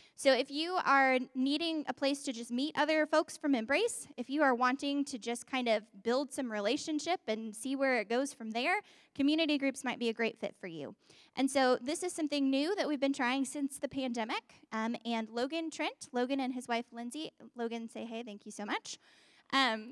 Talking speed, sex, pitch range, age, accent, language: 215 wpm, female, 230-290 Hz, 10-29, American, English